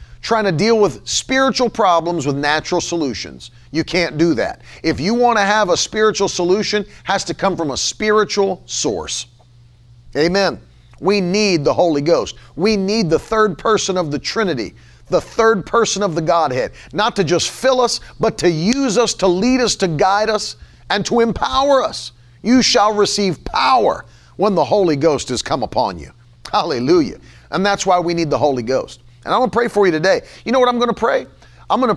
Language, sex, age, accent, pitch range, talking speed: English, male, 40-59, American, 140-215 Hz, 195 wpm